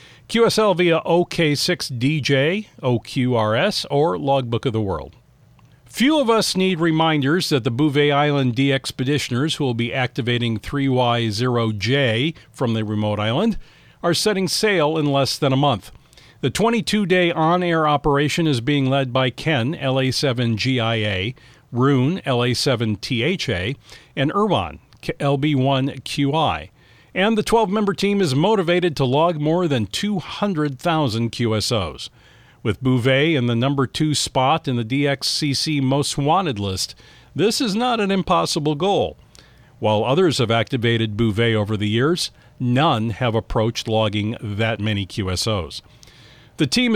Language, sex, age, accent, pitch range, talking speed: English, male, 40-59, American, 120-160 Hz, 125 wpm